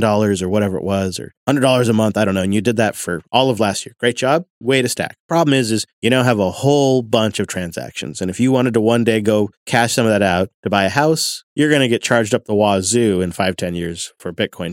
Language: English